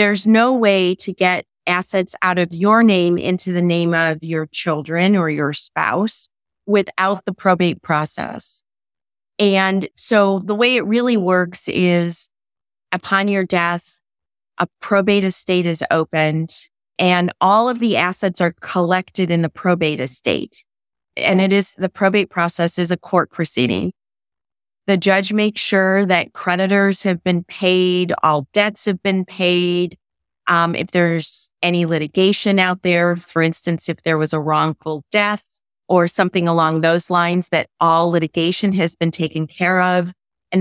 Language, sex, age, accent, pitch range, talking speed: English, female, 30-49, American, 170-195 Hz, 150 wpm